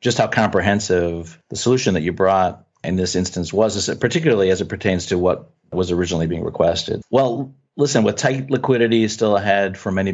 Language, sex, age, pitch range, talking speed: English, male, 40-59, 95-115 Hz, 185 wpm